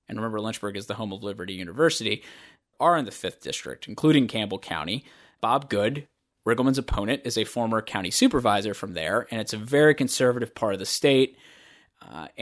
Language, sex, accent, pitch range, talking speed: English, male, American, 110-140 Hz, 185 wpm